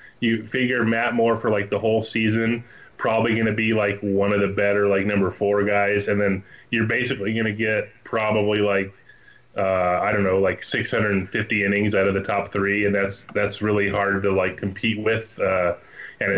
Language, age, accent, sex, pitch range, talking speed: English, 20-39, American, male, 100-110 Hz, 200 wpm